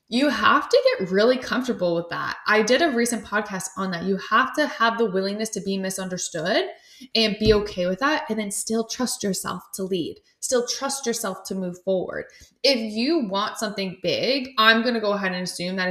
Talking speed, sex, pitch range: 205 wpm, female, 185-230 Hz